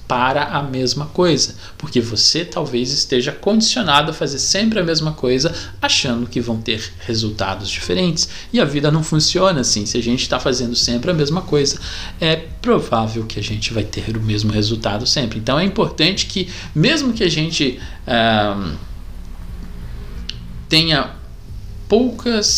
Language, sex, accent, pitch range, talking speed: Portuguese, male, Brazilian, 110-170 Hz, 150 wpm